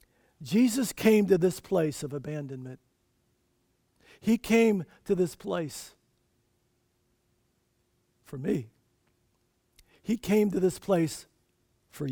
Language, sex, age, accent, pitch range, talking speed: English, male, 50-69, American, 130-190 Hz, 100 wpm